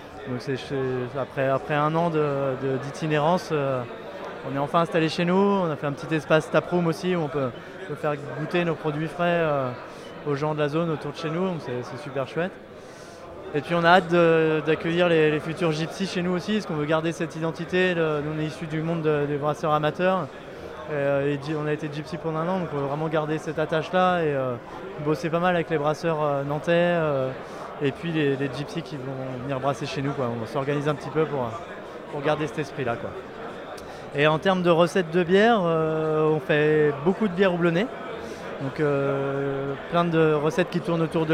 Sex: male